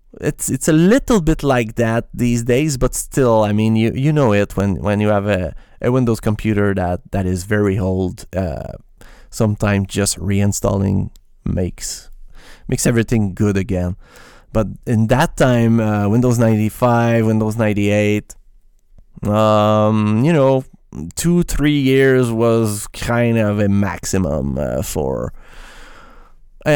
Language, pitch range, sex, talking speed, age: English, 100-125 Hz, male, 140 wpm, 20-39